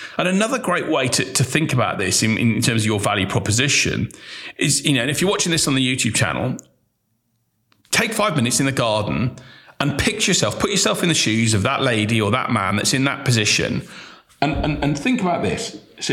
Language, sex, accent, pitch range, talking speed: English, male, British, 105-150 Hz, 220 wpm